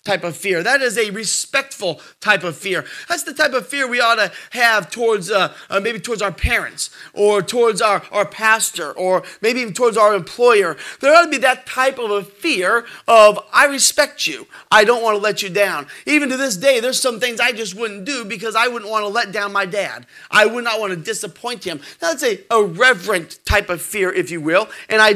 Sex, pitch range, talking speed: male, 185-245 Hz, 230 wpm